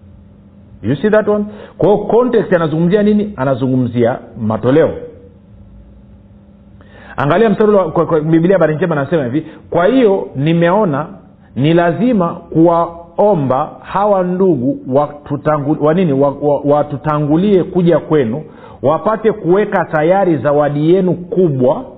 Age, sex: 50-69, male